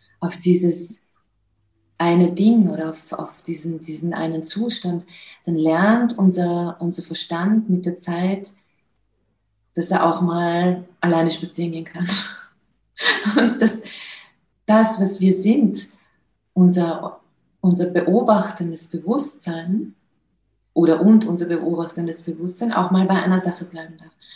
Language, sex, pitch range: German, female, 165-185 Hz